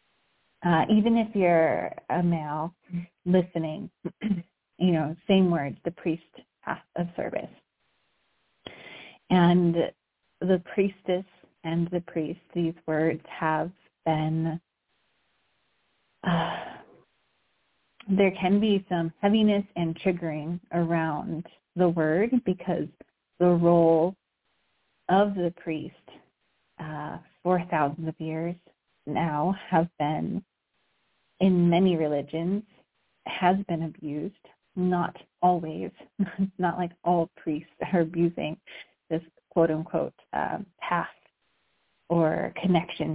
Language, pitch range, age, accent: English, 160-180 Hz, 30-49, American